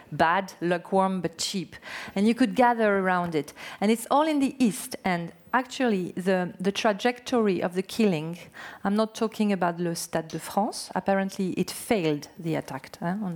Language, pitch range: English, 180-235 Hz